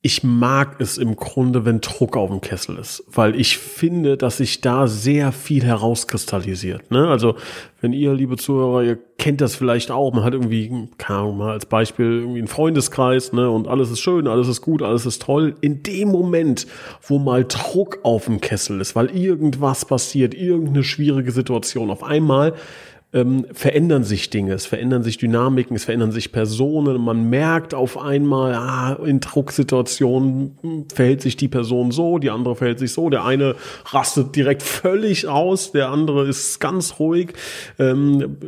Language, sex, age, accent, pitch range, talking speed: German, male, 30-49, German, 120-140 Hz, 175 wpm